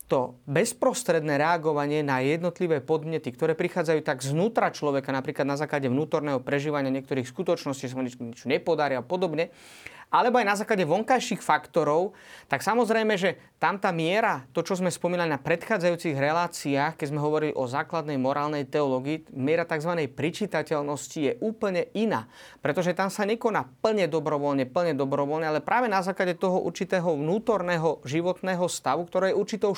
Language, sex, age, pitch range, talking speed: Slovak, male, 30-49, 150-195 Hz, 150 wpm